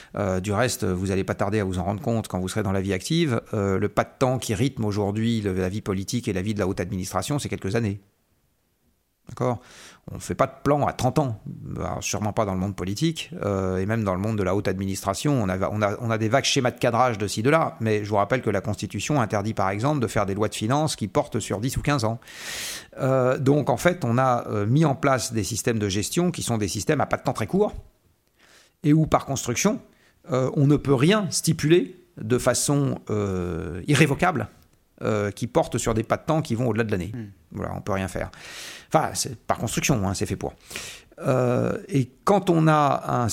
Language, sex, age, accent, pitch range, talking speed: French, male, 40-59, French, 105-140 Hz, 240 wpm